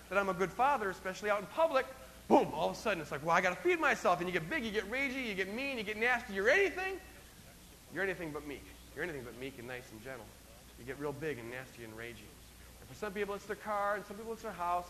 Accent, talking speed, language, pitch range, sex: American, 280 wpm, English, 150-225 Hz, male